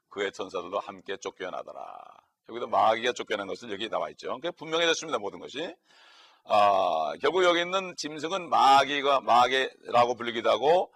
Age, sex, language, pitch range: 40-59, male, Korean, 125-165 Hz